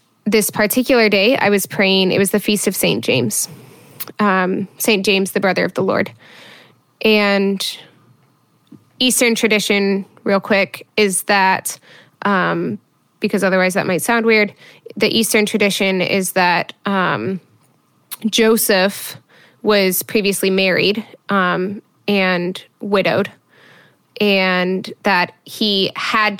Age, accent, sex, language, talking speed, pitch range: 10-29, American, female, English, 120 wpm, 185-210 Hz